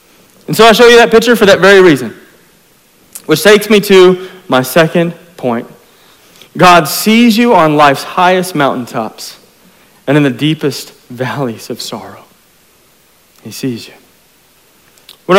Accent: American